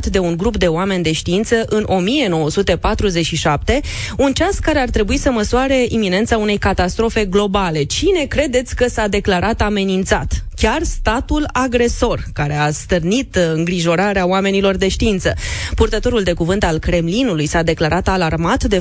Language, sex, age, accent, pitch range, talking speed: Romanian, female, 20-39, native, 175-220 Hz, 145 wpm